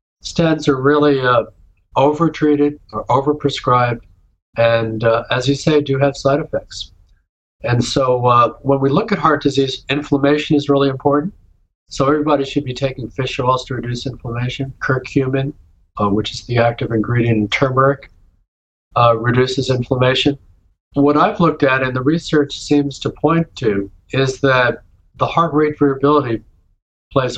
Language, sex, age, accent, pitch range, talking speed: English, male, 50-69, American, 110-140 Hz, 150 wpm